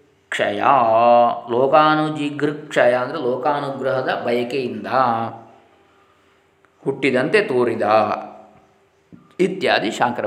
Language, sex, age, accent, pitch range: Kannada, male, 20-39, native, 125-145 Hz